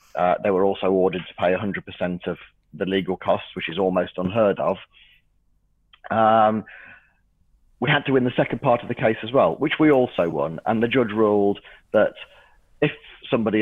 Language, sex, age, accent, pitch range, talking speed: English, male, 30-49, British, 95-115 Hz, 180 wpm